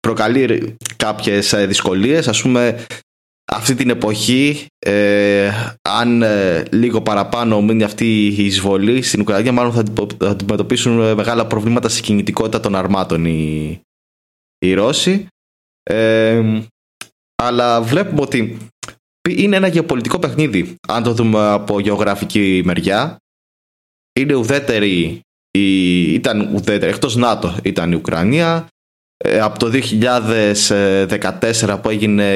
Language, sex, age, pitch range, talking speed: Greek, male, 20-39, 95-115 Hz, 115 wpm